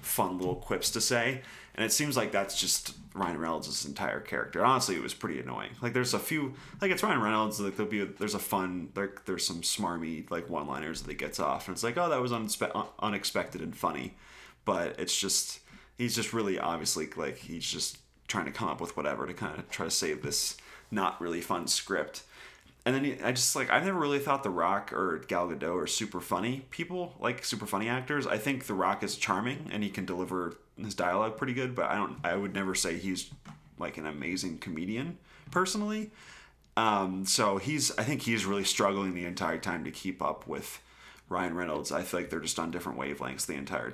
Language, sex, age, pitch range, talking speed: English, male, 30-49, 90-125 Hz, 215 wpm